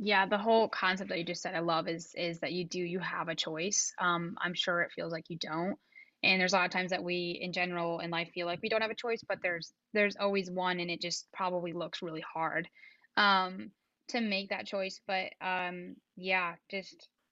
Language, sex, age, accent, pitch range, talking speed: English, female, 10-29, American, 175-200 Hz, 230 wpm